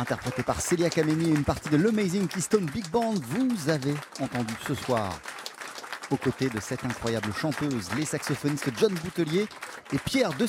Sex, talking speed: male, 165 wpm